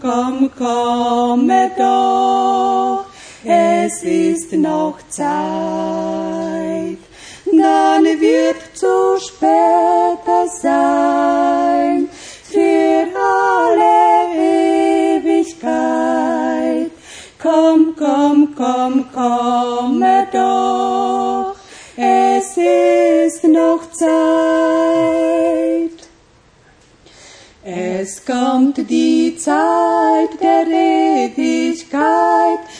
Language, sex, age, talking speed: Romanian, female, 30-49, 55 wpm